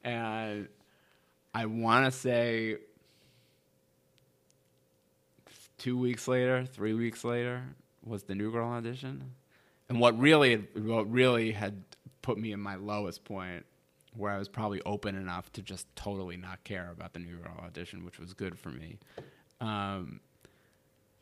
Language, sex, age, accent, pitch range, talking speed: English, male, 30-49, American, 100-120 Hz, 140 wpm